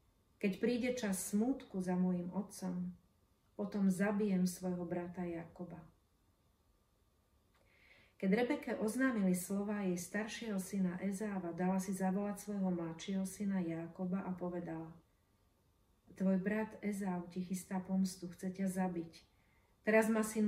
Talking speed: 120 wpm